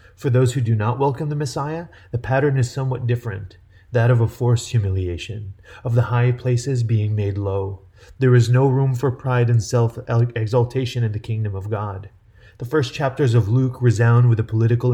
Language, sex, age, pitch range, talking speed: English, male, 30-49, 105-125 Hz, 190 wpm